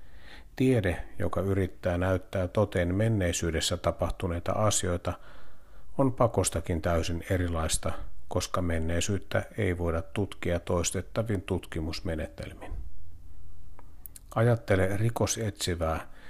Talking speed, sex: 75 wpm, male